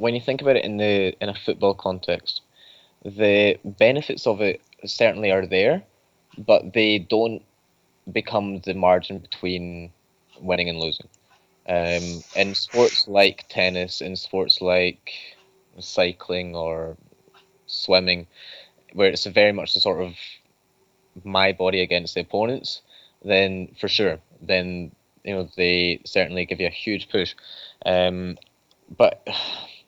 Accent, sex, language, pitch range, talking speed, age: British, male, English, 90-100 Hz, 135 wpm, 20-39